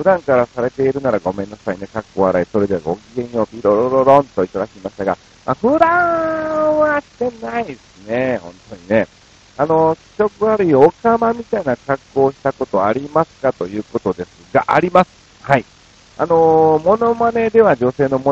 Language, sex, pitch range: Japanese, male, 95-150 Hz